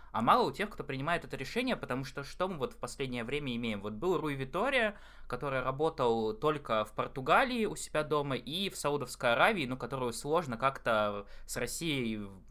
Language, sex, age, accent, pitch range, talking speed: Russian, male, 20-39, native, 115-150 Hz, 190 wpm